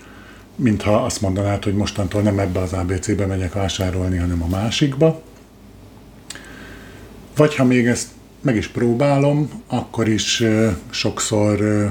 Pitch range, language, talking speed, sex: 95-115 Hz, Hungarian, 120 wpm, male